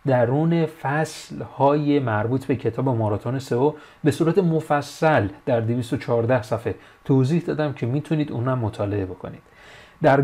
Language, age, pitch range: Persian, 30-49, 115-155 Hz